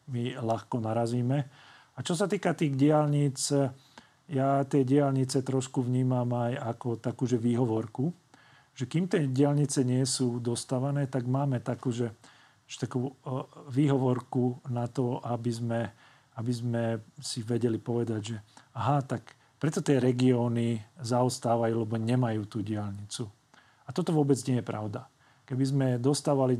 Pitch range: 115-135 Hz